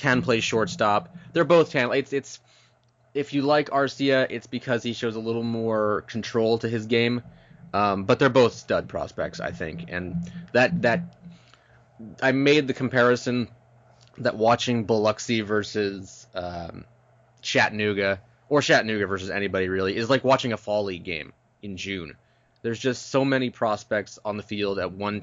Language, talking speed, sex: English, 160 wpm, male